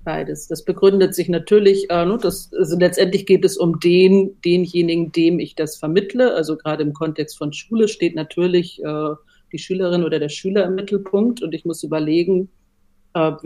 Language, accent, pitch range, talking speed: German, German, 150-180 Hz, 175 wpm